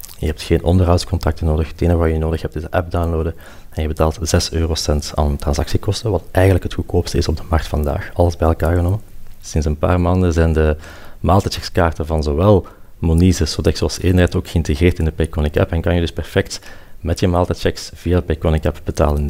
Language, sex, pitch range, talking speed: Dutch, male, 80-90 Hz, 210 wpm